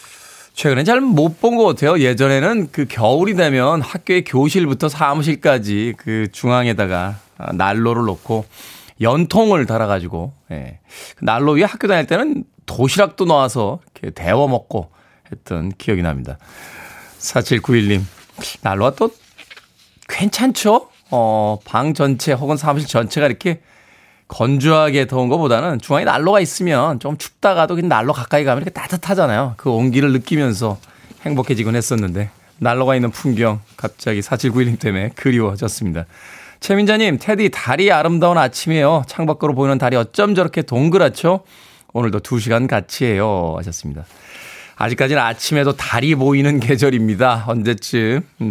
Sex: male